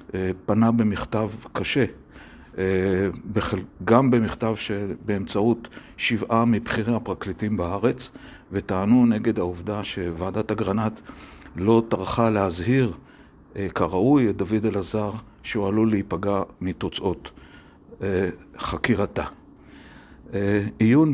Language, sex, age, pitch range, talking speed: Hebrew, male, 50-69, 100-120 Hz, 80 wpm